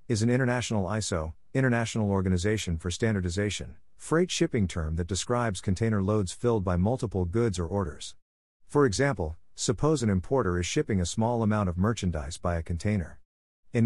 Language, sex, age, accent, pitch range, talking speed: English, male, 50-69, American, 90-115 Hz, 160 wpm